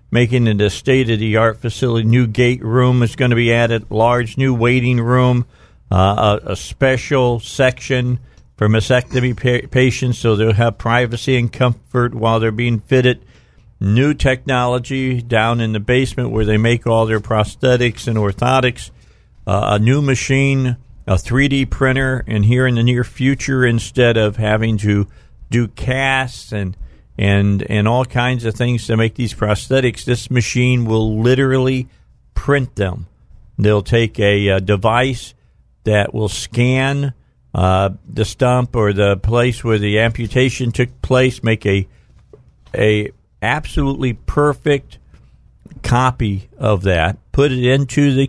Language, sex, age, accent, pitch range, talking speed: English, male, 50-69, American, 105-125 Hz, 145 wpm